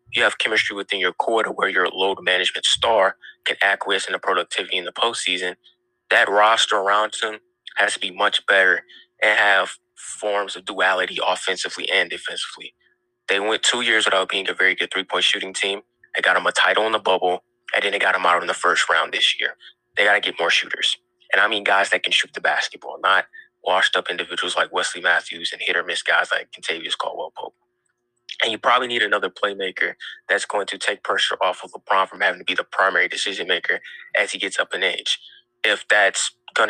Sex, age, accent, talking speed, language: male, 20-39, American, 205 wpm, English